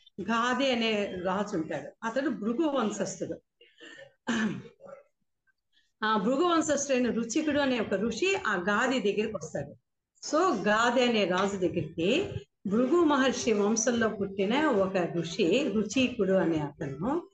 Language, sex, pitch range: Telugu, female, 200-260 Hz